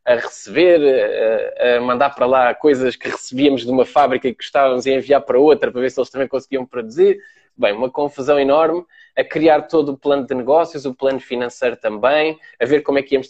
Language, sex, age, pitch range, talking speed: Portuguese, male, 20-39, 125-165 Hz, 210 wpm